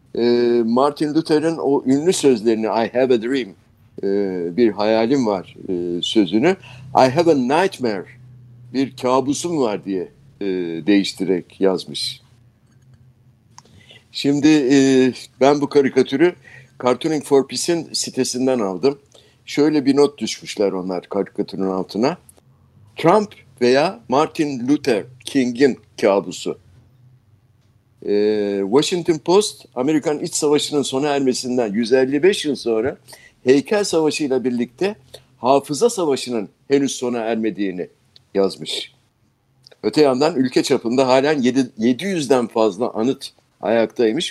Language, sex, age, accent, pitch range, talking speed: Turkish, male, 60-79, native, 115-140 Hz, 100 wpm